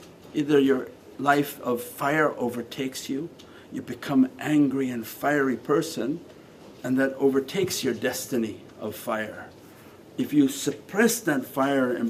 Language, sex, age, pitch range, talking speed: English, male, 50-69, 135-195 Hz, 130 wpm